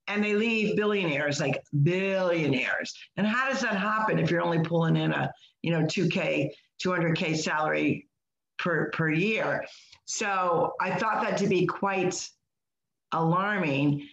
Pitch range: 165-205 Hz